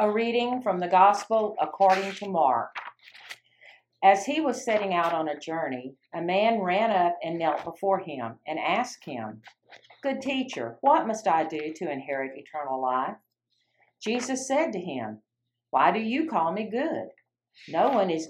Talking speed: 165 wpm